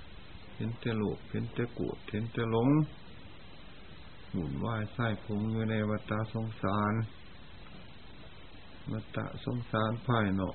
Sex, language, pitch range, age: male, Thai, 100-120 Hz, 60-79